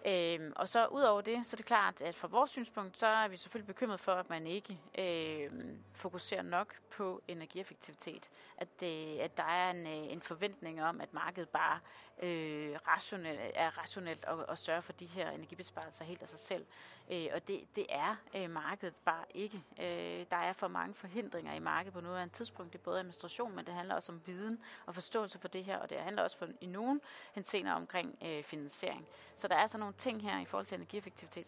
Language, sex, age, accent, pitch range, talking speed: Danish, female, 30-49, native, 165-200 Hz, 215 wpm